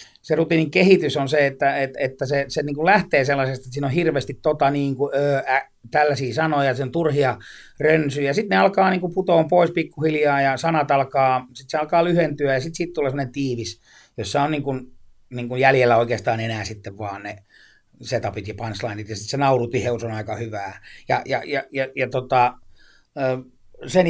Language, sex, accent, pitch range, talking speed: Finnish, male, native, 130-160 Hz, 195 wpm